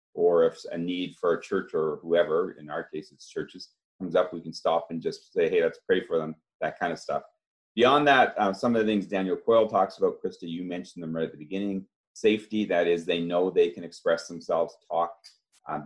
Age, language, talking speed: 40-59, English, 230 wpm